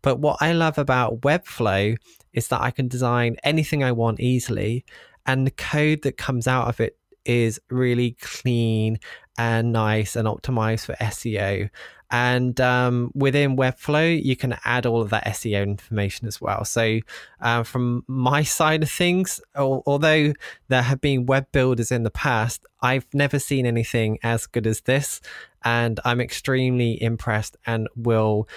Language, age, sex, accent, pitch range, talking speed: English, 20-39, male, British, 115-135 Hz, 160 wpm